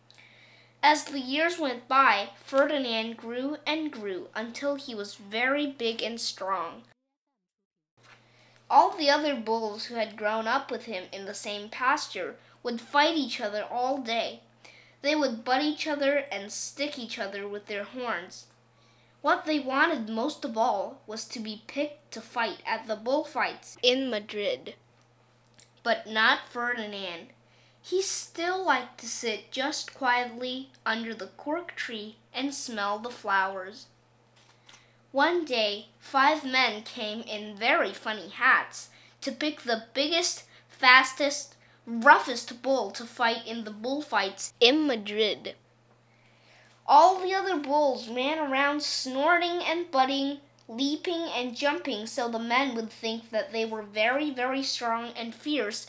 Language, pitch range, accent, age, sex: Chinese, 220-285 Hz, American, 10-29, female